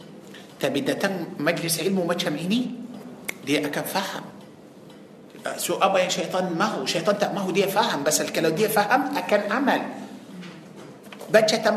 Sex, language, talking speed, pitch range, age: male, Malay, 145 wpm, 190-245 Hz, 50-69